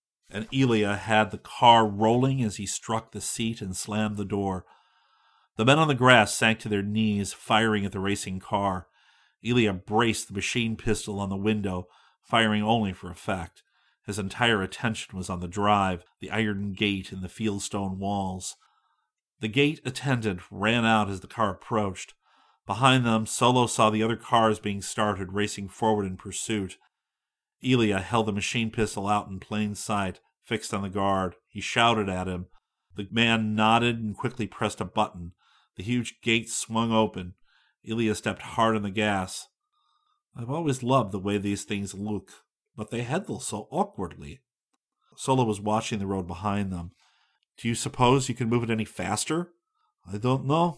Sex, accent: male, American